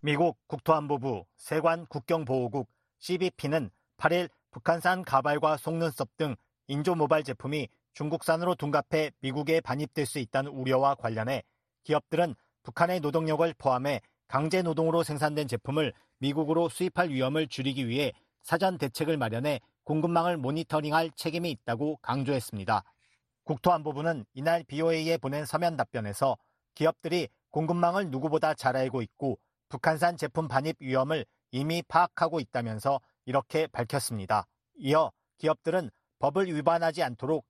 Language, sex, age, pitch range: Korean, male, 40-59, 130-165 Hz